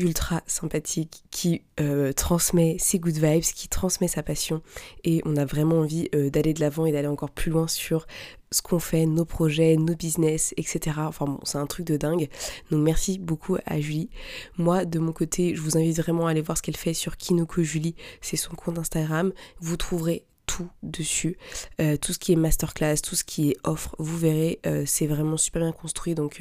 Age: 20-39